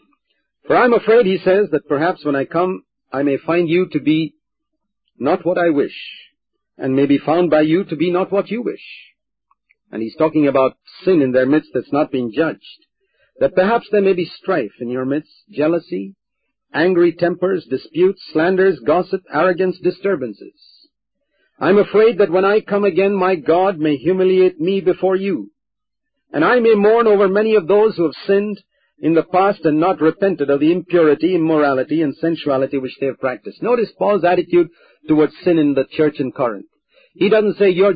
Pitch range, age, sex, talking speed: 155-200 Hz, 50-69, male, 185 wpm